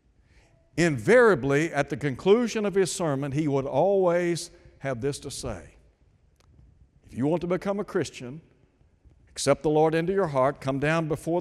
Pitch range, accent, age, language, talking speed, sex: 105-160 Hz, American, 60-79, English, 160 wpm, male